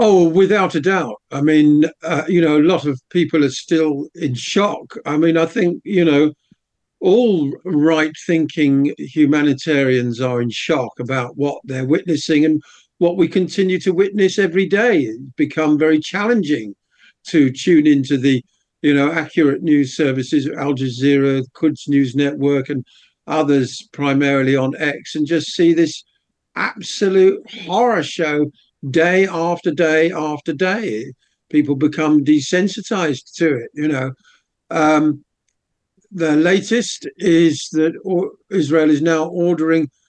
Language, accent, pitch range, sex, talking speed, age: English, British, 145-175 Hz, male, 140 wpm, 50-69